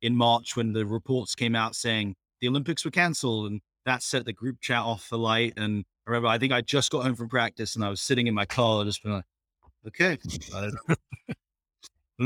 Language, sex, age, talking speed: English, male, 30-49, 220 wpm